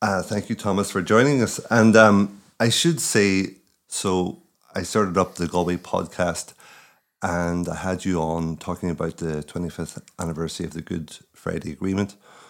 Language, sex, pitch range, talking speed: English, male, 80-100 Hz, 165 wpm